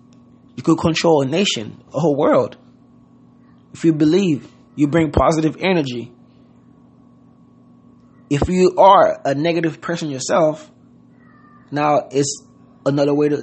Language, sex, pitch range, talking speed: English, male, 140-160 Hz, 115 wpm